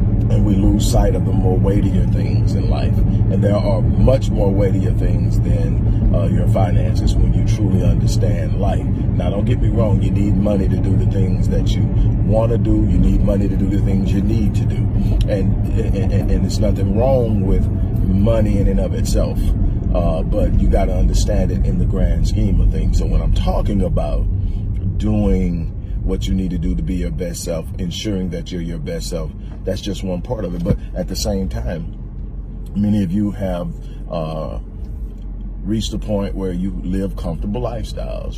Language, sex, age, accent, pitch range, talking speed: English, male, 40-59, American, 90-105 Hz, 195 wpm